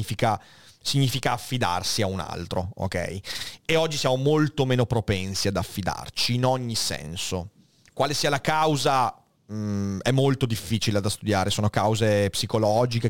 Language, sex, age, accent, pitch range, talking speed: Italian, male, 30-49, native, 105-130 Hz, 135 wpm